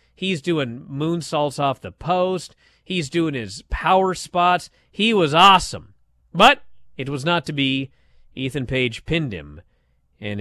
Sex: male